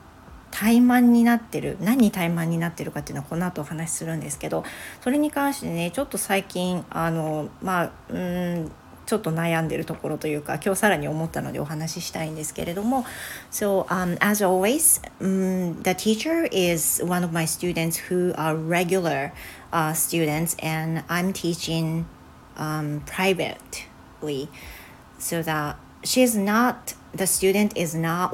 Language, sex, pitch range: Japanese, female, 160-195 Hz